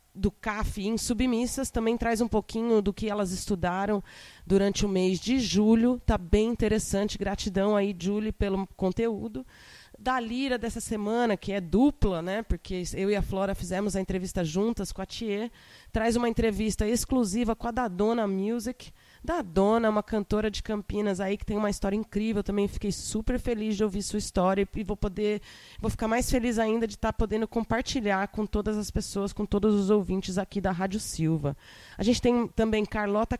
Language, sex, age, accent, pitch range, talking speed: Portuguese, female, 20-39, Brazilian, 195-225 Hz, 190 wpm